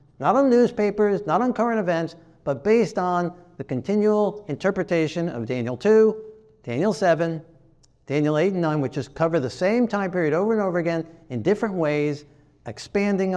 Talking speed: 165 wpm